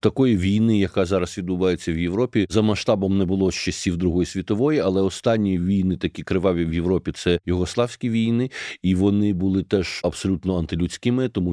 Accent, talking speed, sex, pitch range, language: native, 160 wpm, male, 95-115 Hz, Ukrainian